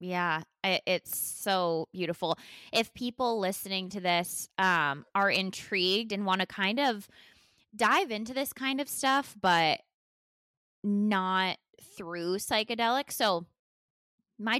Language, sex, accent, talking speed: English, female, American, 120 wpm